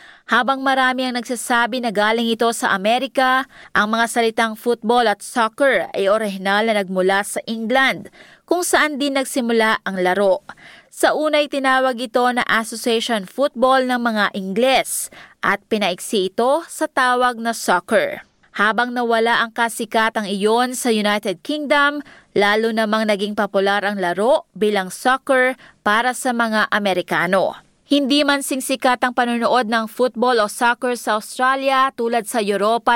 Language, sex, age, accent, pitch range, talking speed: Filipino, female, 20-39, native, 210-255 Hz, 145 wpm